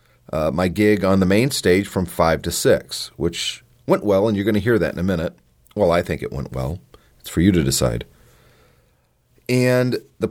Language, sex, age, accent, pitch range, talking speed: English, male, 30-49, American, 85-110 Hz, 210 wpm